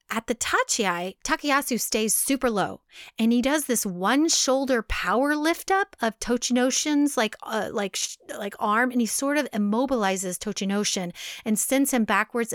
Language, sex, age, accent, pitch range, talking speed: English, female, 30-49, American, 200-255 Hz, 160 wpm